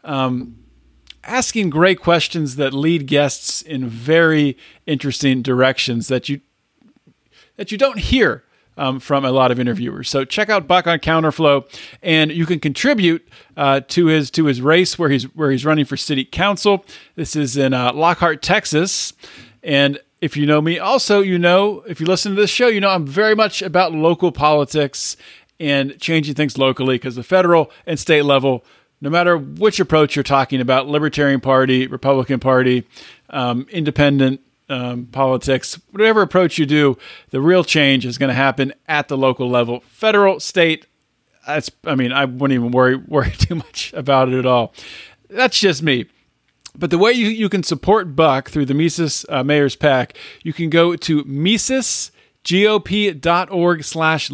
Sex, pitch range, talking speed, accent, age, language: male, 135-175 Hz, 170 wpm, American, 40-59, English